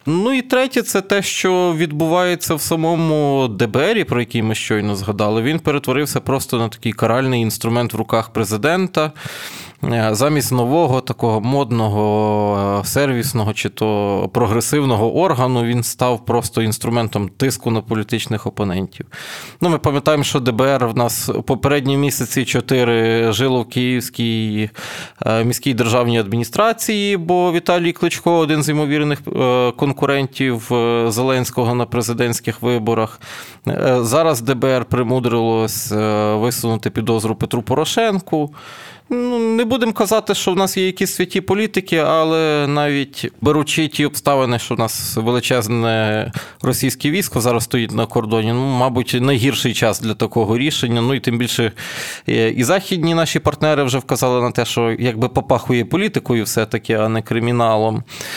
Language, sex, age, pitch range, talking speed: Ukrainian, male, 20-39, 115-155 Hz, 135 wpm